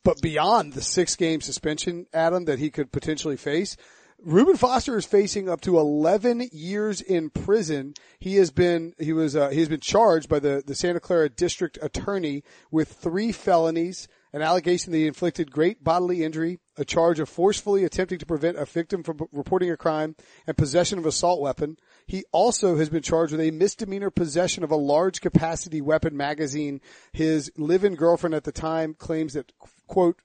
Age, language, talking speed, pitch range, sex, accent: 40-59, English, 180 wpm, 150-175 Hz, male, American